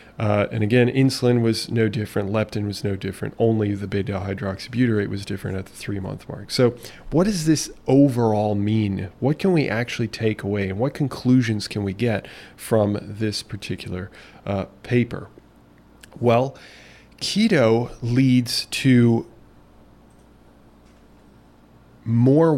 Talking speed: 135 wpm